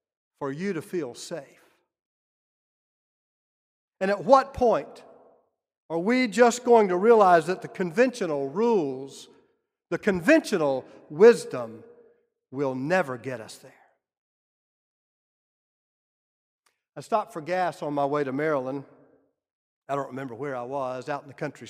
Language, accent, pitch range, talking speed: English, American, 145-190 Hz, 125 wpm